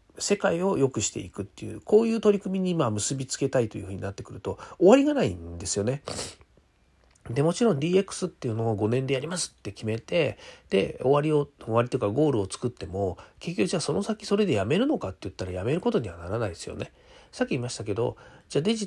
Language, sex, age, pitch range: Japanese, male, 40-59, 95-140 Hz